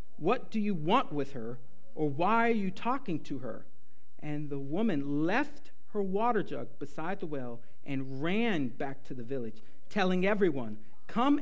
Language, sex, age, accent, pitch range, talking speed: English, male, 50-69, American, 145-220 Hz, 170 wpm